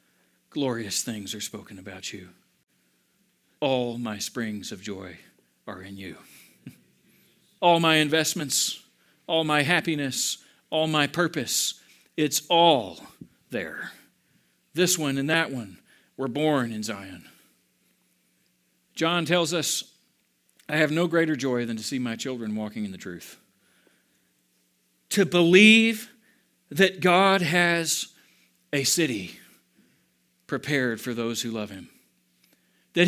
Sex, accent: male, American